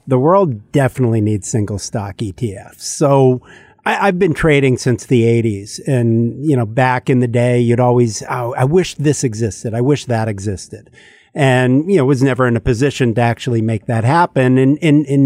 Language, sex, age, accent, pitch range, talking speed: English, male, 50-69, American, 115-145 Hz, 185 wpm